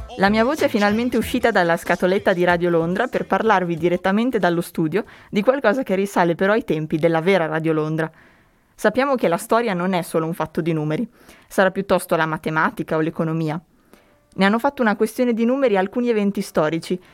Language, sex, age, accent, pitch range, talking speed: Italian, female, 20-39, native, 175-220 Hz, 190 wpm